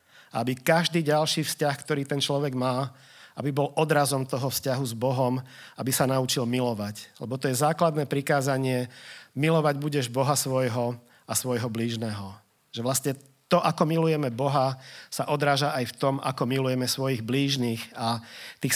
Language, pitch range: Czech, 130-145 Hz